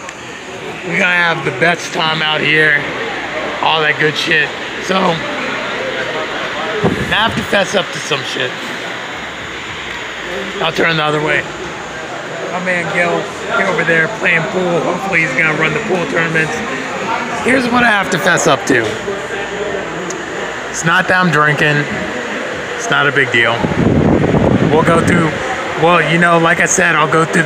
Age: 30-49